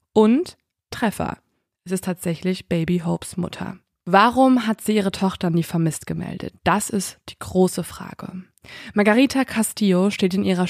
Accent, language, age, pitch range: German, German, 20-39, 175-210 Hz